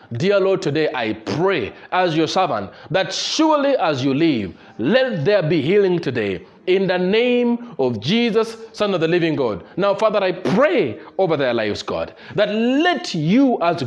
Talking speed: 175 wpm